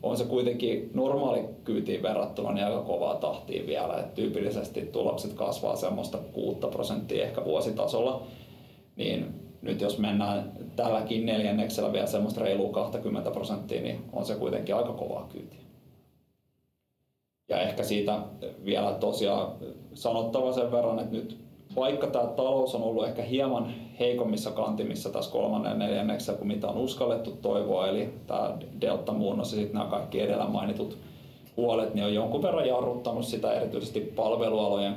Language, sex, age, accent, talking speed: Finnish, male, 30-49, native, 135 wpm